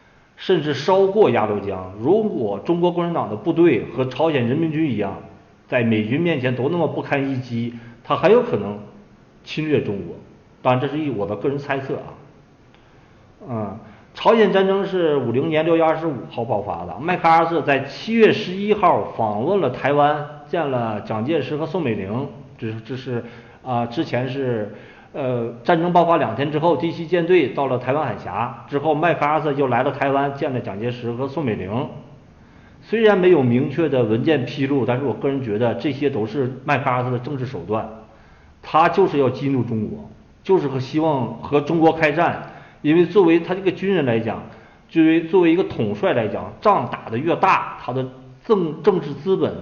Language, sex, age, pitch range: Chinese, male, 50-69, 120-165 Hz